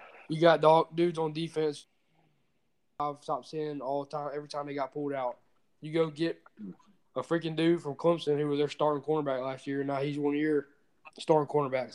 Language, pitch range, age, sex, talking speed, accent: English, 140-160 Hz, 20-39, male, 205 wpm, American